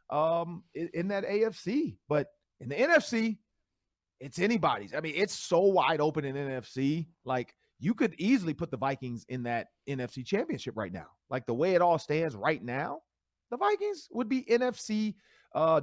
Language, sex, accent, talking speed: English, male, American, 170 wpm